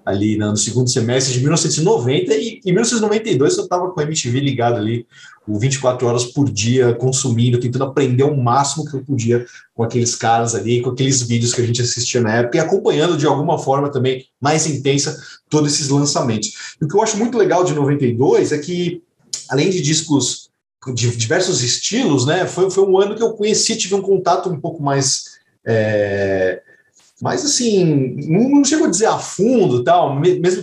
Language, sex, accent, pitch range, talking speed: Portuguese, male, Brazilian, 120-170 Hz, 180 wpm